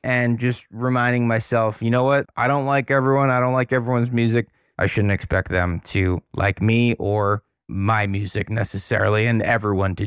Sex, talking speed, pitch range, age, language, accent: male, 180 wpm, 110-130 Hz, 20-39, English, American